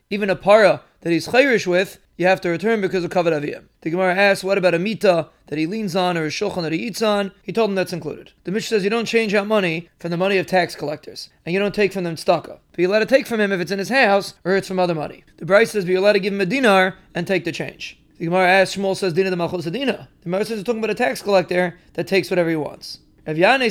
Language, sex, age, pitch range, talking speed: English, male, 30-49, 170-200 Hz, 290 wpm